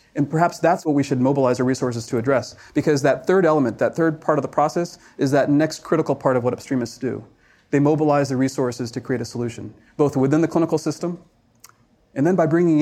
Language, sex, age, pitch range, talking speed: English, male, 30-49, 120-150 Hz, 220 wpm